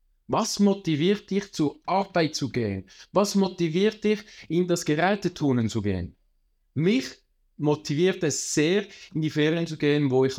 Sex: male